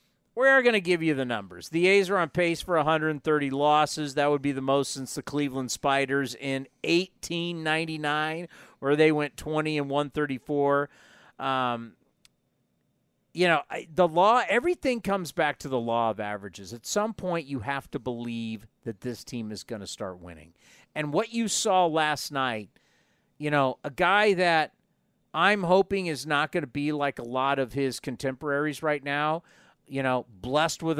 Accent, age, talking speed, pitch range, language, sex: American, 40-59, 175 wpm, 135-155 Hz, English, male